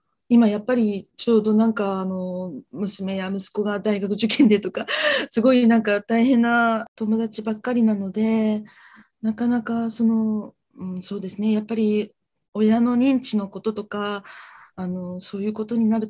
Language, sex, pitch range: Japanese, female, 190-225 Hz